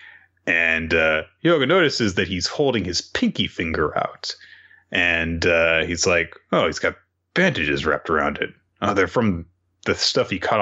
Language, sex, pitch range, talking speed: English, male, 90-130 Hz, 165 wpm